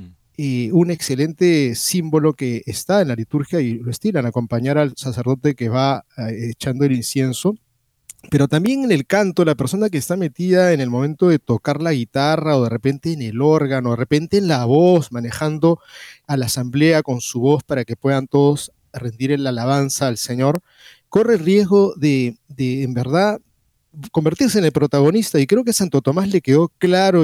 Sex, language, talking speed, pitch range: male, Spanish, 180 wpm, 130-175 Hz